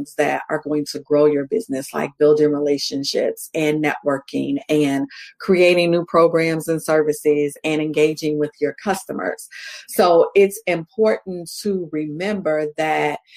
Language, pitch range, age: English, 150-190 Hz, 40-59